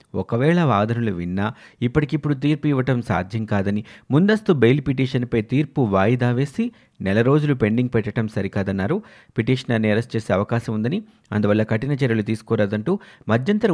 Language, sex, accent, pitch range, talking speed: Telugu, male, native, 110-140 Hz, 125 wpm